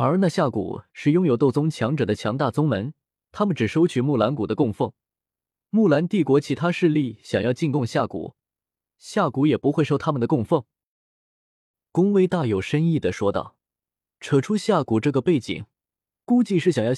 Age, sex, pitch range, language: 20-39, male, 105-160 Hz, Chinese